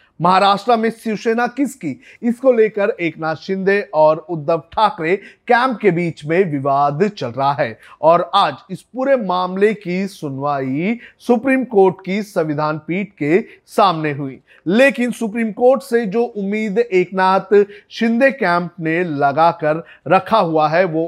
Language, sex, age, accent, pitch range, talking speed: Hindi, male, 30-49, native, 160-220 Hz, 140 wpm